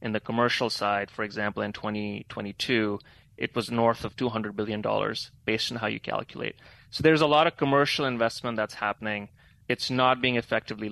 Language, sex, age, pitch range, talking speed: English, male, 30-49, 105-125 Hz, 180 wpm